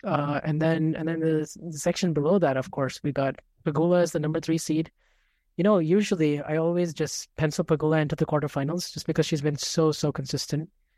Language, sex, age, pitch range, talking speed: English, male, 20-39, 140-160 Hz, 210 wpm